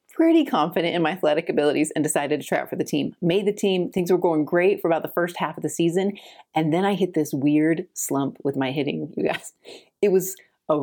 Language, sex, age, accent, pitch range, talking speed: English, female, 30-49, American, 160-200 Hz, 245 wpm